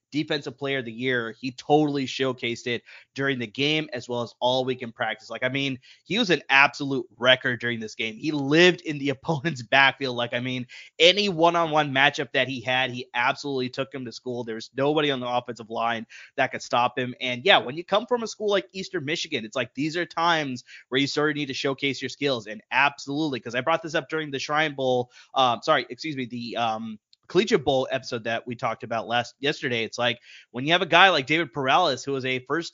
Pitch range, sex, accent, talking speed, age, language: 125-155 Hz, male, American, 230 wpm, 20-39, English